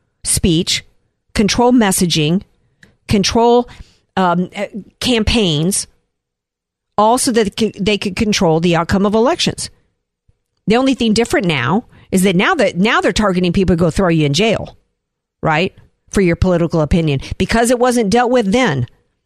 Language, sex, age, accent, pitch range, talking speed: English, female, 50-69, American, 165-235 Hz, 145 wpm